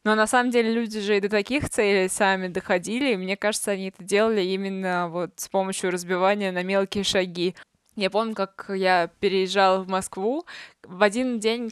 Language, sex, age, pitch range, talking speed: Russian, female, 20-39, 185-215 Hz, 185 wpm